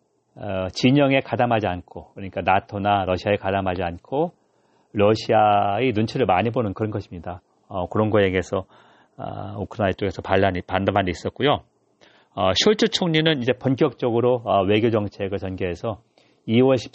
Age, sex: 40-59, male